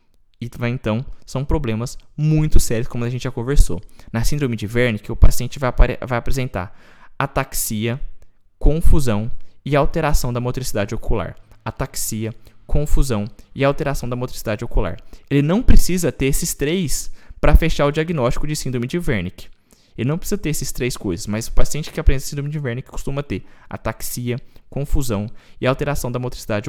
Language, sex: Portuguese, male